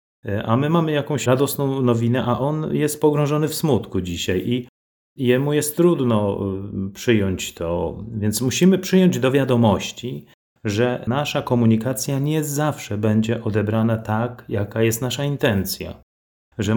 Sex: male